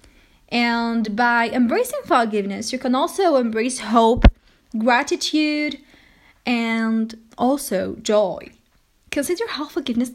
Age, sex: 10-29, female